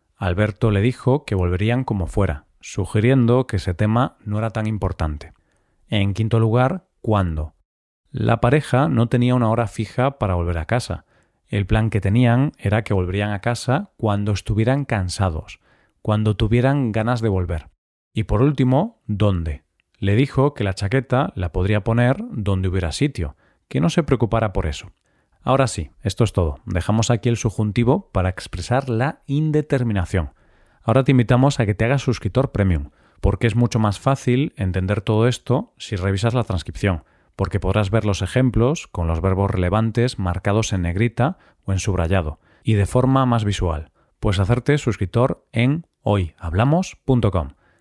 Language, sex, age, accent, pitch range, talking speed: Spanish, male, 40-59, Spanish, 95-125 Hz, 160 wpm